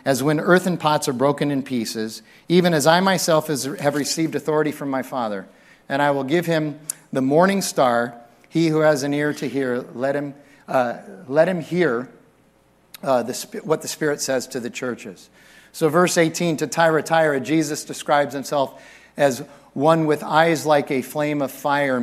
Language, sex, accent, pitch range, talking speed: English, male, American, 135-165 Hz, 185 wpm